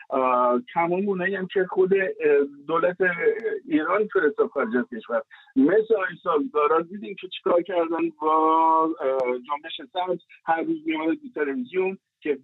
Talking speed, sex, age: 115 wpm, male, 50-69